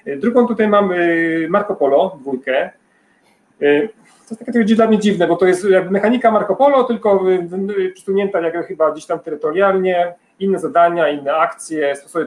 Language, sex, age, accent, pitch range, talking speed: Polish, male, 40-59, native, 155-200 Hz, 155 wpm